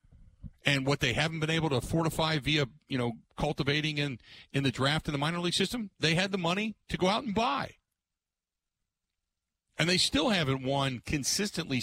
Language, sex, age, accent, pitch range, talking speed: English, male, 50-69, American, 100-155 Hz, 185 wpm